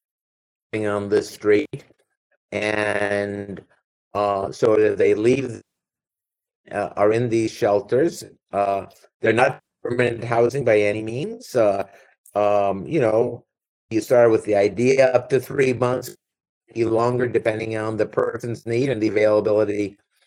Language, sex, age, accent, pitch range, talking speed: English, male, 50-69, American, 105-130 Hz, 130 wpm